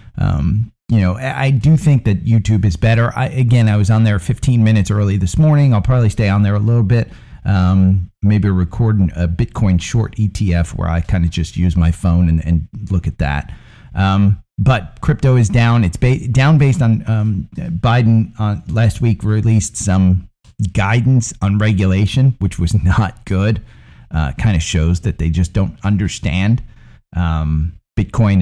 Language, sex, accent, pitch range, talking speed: English, male, American, 95-120 Hz, 175 wpm